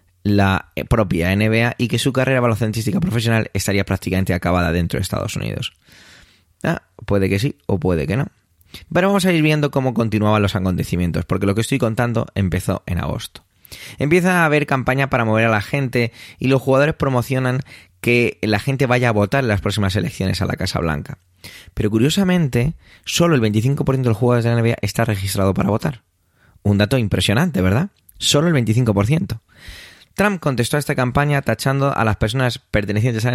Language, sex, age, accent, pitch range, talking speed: Spanish, male, 20-39, Spanish, 95-130 Hz, 185 wpm